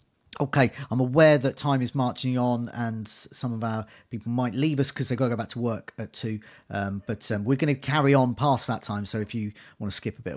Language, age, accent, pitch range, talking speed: English, 40-59, British, 105-150 Hz, 260 wpm